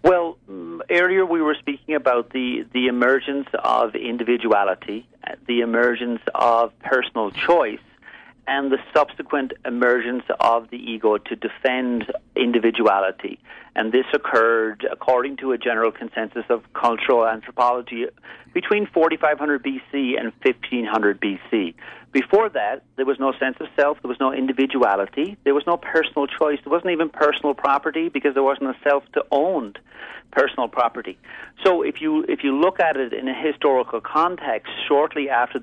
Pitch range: 115-150 Hz